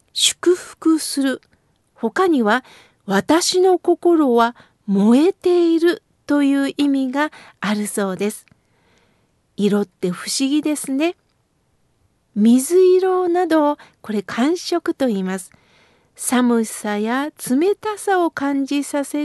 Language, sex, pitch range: Japanese, female, 225-340 Hz